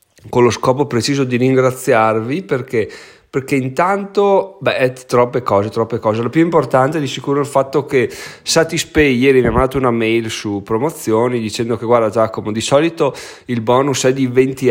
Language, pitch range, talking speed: Italian, 115-140 Hz, 170 wpm